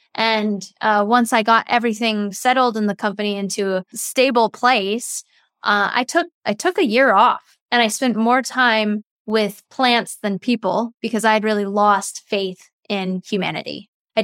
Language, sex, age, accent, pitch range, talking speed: English, female, 10-29, American, 200-230 Hz, 170 wpm